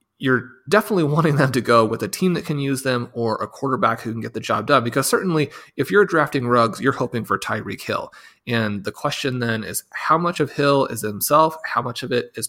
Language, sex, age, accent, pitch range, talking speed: English, male, 30-49, American, 115-145 Hz, 235 wpm